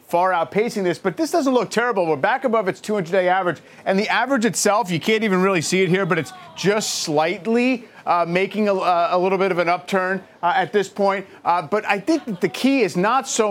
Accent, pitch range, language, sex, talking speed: American, 165-210 Hz, English, male, 230 wpm